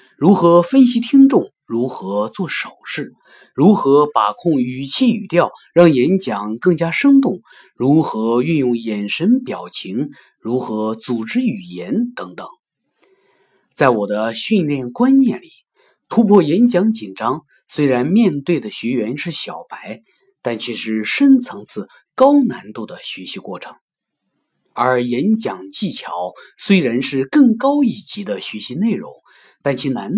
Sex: male